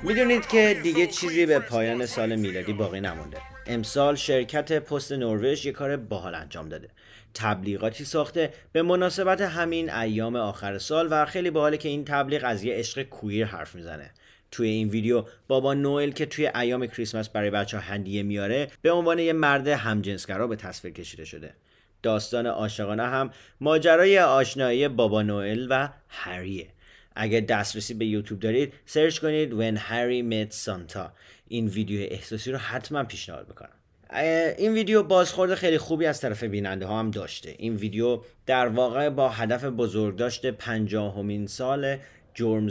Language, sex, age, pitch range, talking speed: English, male, 30-49, 105-145 Hz, 155 wpm